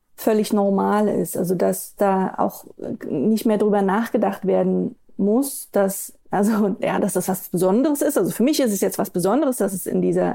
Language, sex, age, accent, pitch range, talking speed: German, female, 30-49, German, 185-215 Hz, 190 wpm